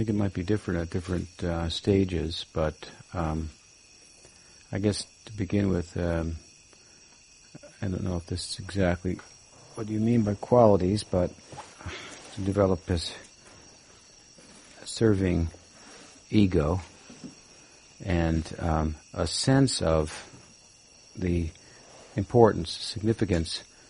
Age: 60-79